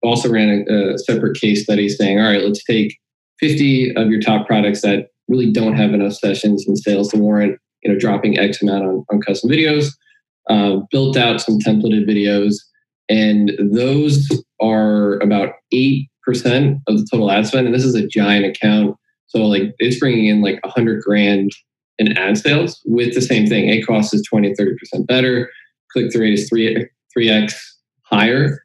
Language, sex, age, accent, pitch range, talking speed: English, male, 20-39, American, 105-120 Hz, 175 wpm